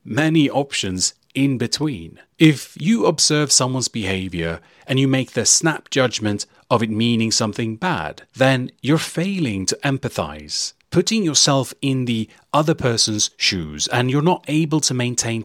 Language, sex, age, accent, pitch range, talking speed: English, male, 30-49, British, 105-155 Hz, 150 wpm